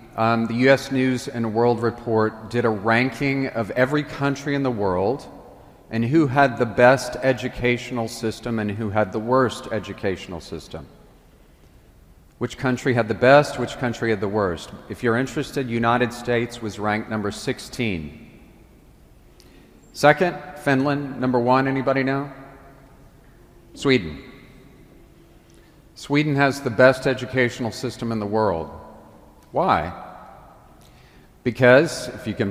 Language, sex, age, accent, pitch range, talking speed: English, male, 40-59, American, 110-135 Hz, 130 wpm